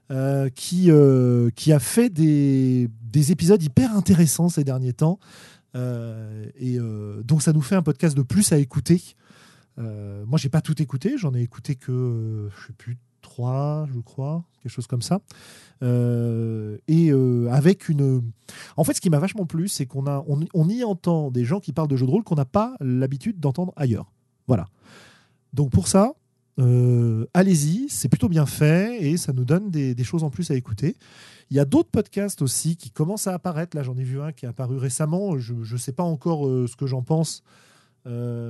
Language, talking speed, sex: French, 205 wpm, male